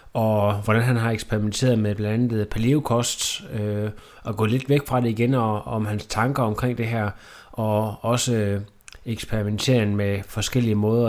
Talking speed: 160 wpm